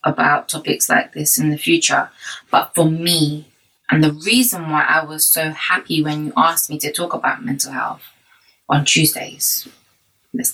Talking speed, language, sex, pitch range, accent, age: 170 wpm, English, female, 150-205 Hz, British, 20-39